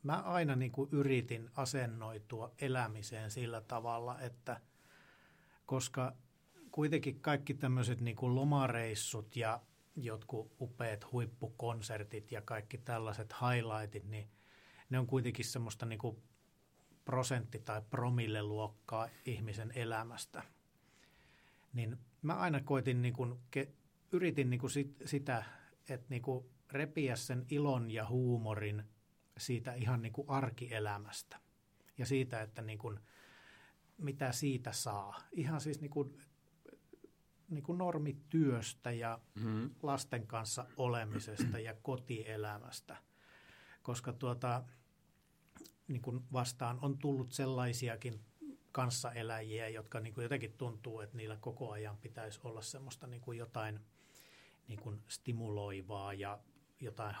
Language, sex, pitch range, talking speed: Finnish, male, 110-135 Hz, 100 wpm